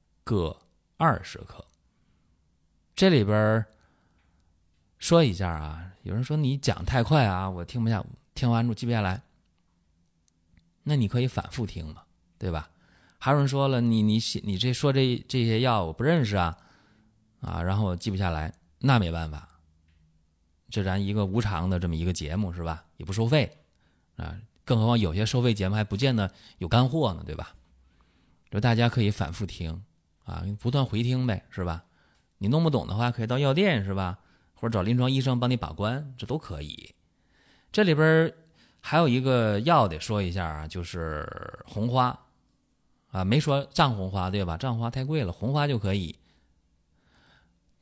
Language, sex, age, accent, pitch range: Chinese, male, 20-39, native, 85-125 Hz